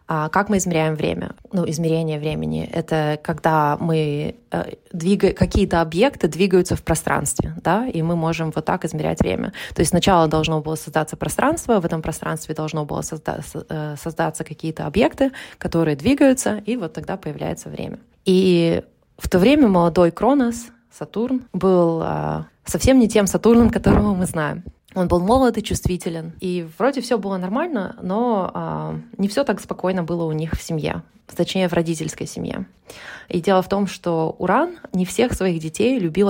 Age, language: 20-39, Russian